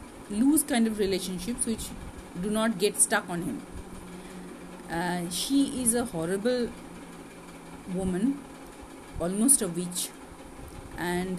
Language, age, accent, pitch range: Bengali, 50-69, native, 180-225 Hz